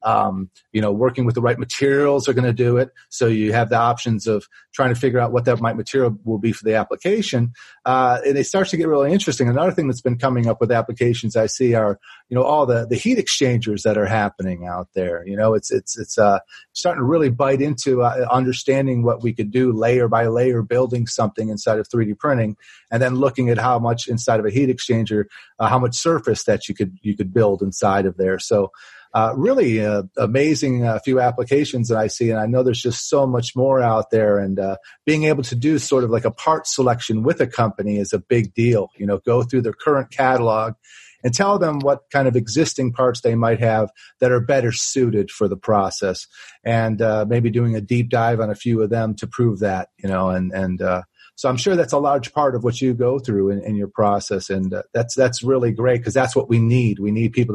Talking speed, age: 240 wpm, 30-49